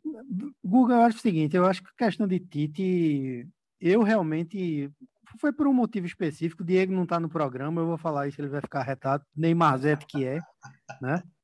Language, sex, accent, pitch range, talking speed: Portuguese, male, Brazilian, 150-185 Hz, 195 wpm